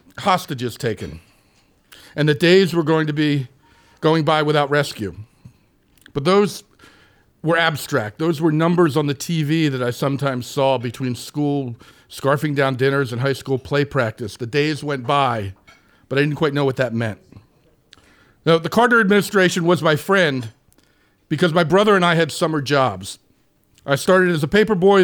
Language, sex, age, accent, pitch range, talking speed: English, male, 50-69, American, 140-175 Hz, 170 wpm